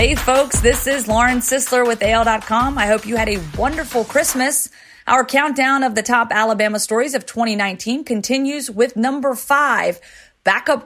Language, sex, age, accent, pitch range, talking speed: English, female, 30-49, American, 220-260 Hz, 160 wpm